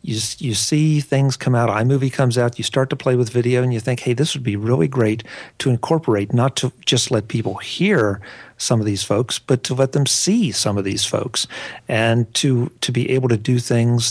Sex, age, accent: male, 50-69, American